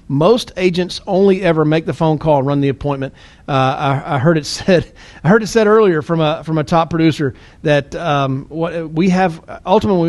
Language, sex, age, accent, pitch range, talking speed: English, male, 40-59, American, 145-180 Hz, 200 wpm